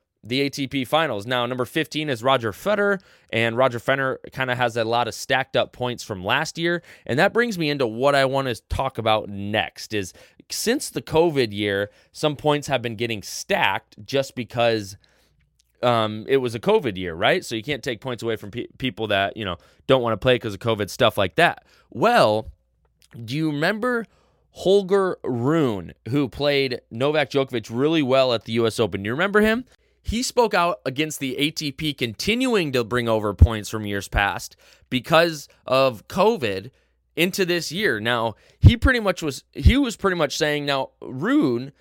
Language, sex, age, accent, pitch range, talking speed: English, male, 20-39, American, 115-155 Hz, 185 wpm